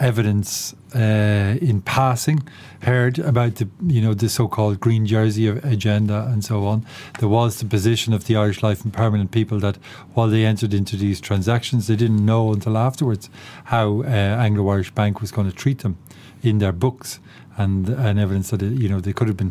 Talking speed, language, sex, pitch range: 195 wpm, English, male, 105-125 Hz